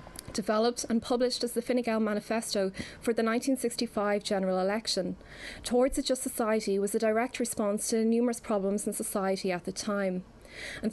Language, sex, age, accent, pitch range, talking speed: English, female, 20-39, Irish, 195-240 Hz, 160 wpm